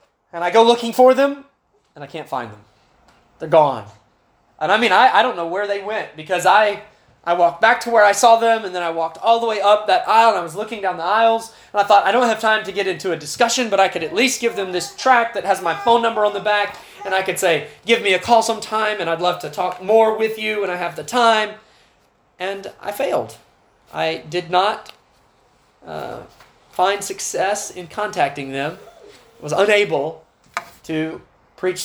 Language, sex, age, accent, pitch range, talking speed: English, male, 20-39, American, 165-215 Hz, 220 wpm